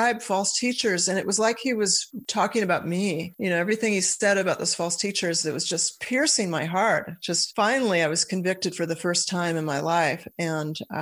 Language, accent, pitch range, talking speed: English, American, 170-210 Hz, 210 wpm